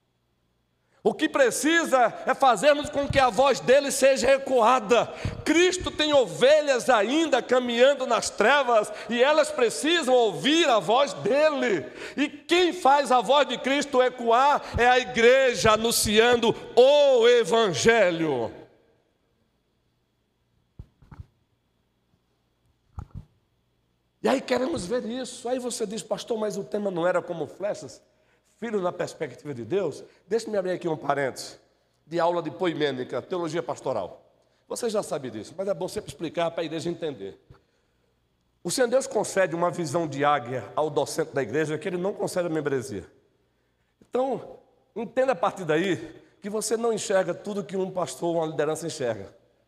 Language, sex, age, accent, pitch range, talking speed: Portuguese, male, 60-79, Brazilian, 160-255 Hz, 145 wpm